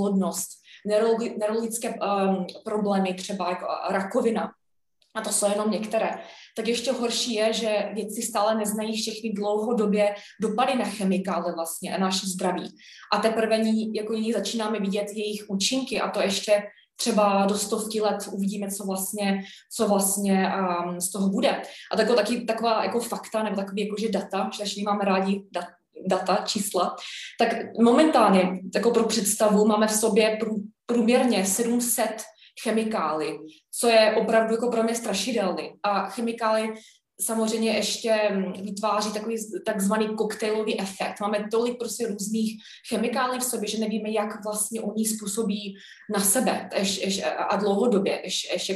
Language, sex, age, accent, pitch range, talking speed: Czech, female, 20-39, native, 195-225 Hz, 145 wpm